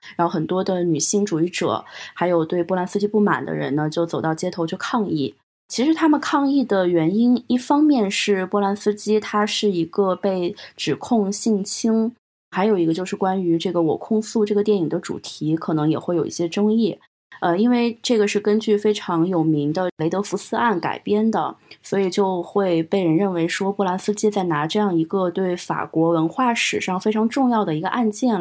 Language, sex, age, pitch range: Chinese, female, 20-39, 170-215 Hz